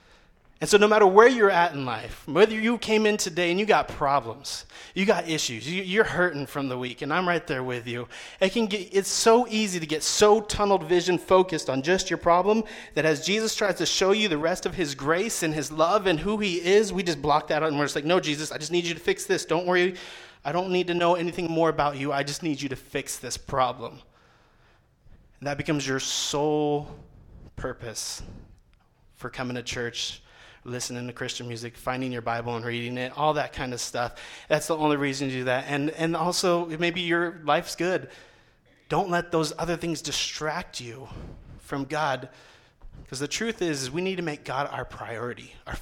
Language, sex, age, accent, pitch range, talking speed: English, male, 30-49, American, 135-180 Hz, 215 wpm